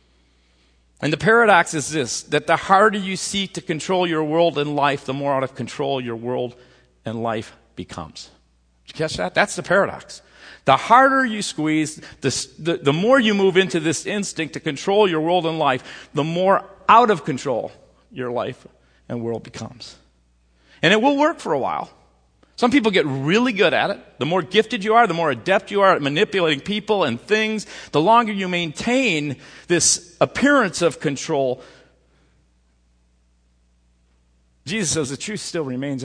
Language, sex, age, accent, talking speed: English, male, 40-59, American, 175 wpm